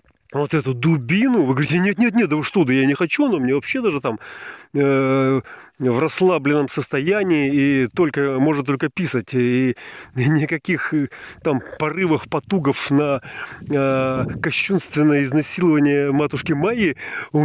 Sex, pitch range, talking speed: male, 125-185 Hz, 150 wpm